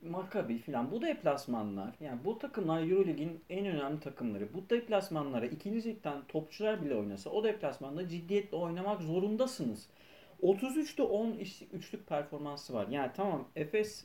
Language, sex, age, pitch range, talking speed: Turkish, male, 40-59, 140-205 Hz, 135 wpm